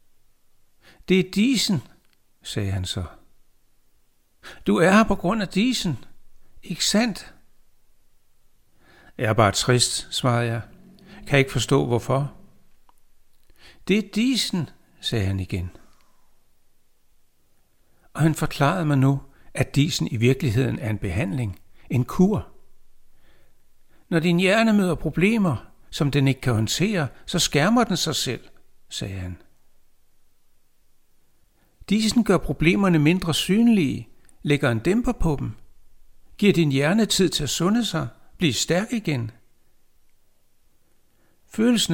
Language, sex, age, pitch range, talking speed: Danish, male, 60-79, 115-175 Hz, 120 wpm